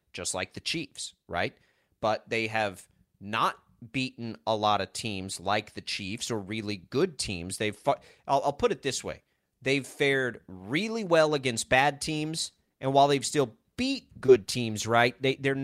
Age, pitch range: 30-49, 105-135 Hz